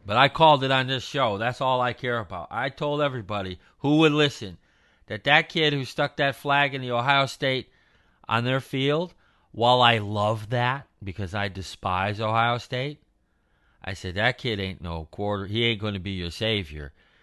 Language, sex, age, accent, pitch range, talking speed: English, male, 40-59, American, 100-130 Hz, 190 wpm